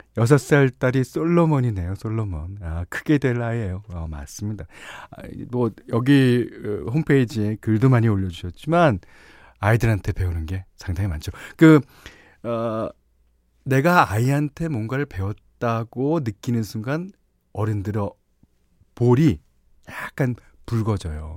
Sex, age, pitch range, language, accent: male, 40-59, 95-140 Hz, Korean, native